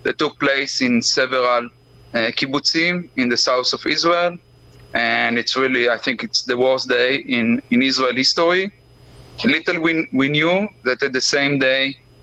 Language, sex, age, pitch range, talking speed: English, male, 30-49, 120-155 Hz, 165 wpm